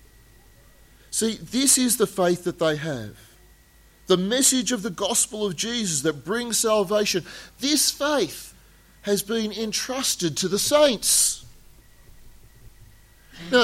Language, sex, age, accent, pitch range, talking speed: English, male, 40-59, Australian, 125-195 Hz, 115 wpm